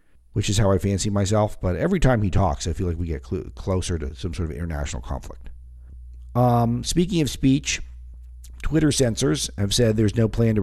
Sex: male